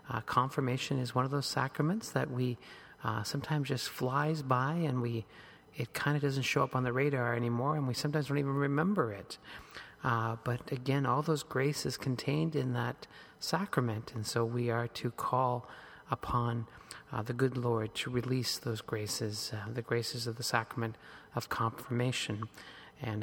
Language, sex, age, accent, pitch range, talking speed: English, male, 40-59, American, 115-140 Hz, 175 wpm